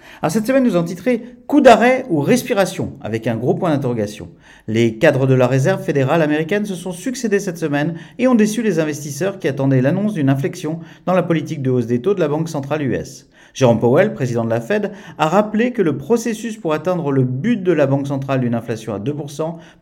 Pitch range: 135-185 Hz